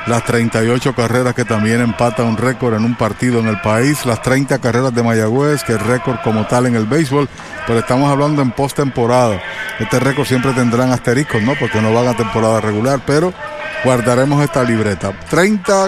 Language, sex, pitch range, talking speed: Spanish, male, 115-140 Hz, 185 wpm